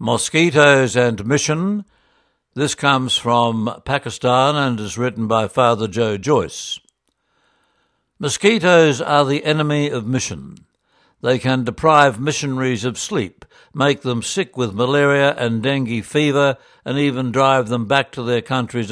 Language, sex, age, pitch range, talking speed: English, male, 60-79, 120-145 Hz, 135 wpm